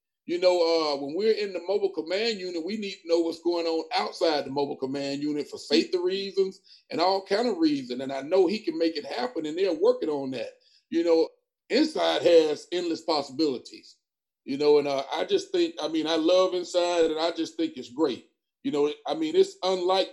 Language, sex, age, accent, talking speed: English, male, 40-59, American, 220 wpm